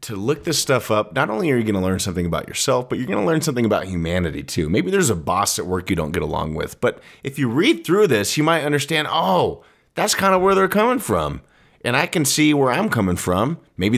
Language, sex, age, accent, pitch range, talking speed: English, male, 30-49, American, 90-135 Hz, 260 wpm